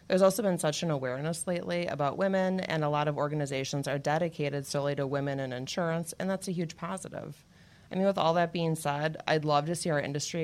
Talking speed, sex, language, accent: 225 wpm, female, English, American